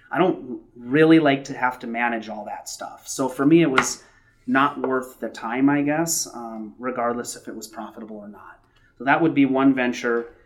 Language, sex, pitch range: English, male, 110-135 Hz